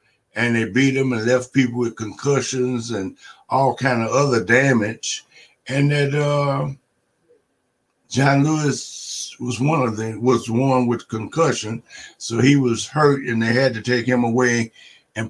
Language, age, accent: English, 60-79, American